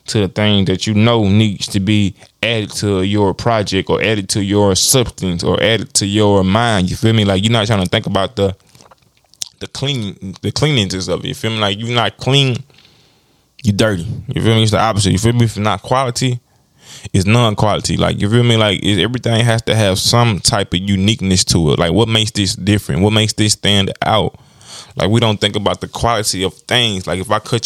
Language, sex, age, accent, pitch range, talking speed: English, male, 20-39, American, 100-115 Hz, 225 wpm